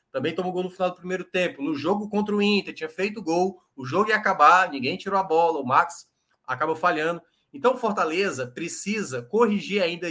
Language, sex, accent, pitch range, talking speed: Portuguese, male, Brazilian, 165-220 Hz, 200 wpm